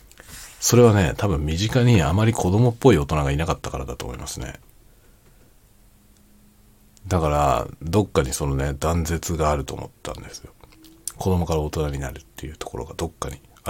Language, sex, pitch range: Japanese, male, 75-105 Hz